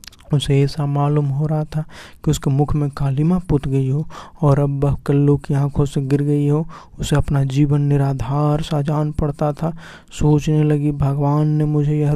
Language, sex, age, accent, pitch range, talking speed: Hindi, male, 20-39, native, 140-155 Hz, 195 wpm